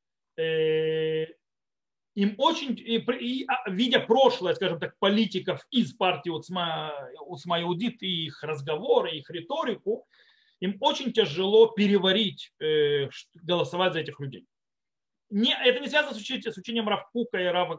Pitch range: 165-230 Hz